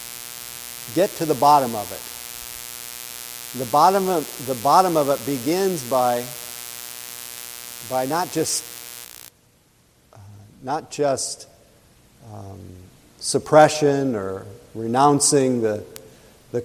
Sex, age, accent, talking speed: male, 50-69, American, 95 wpm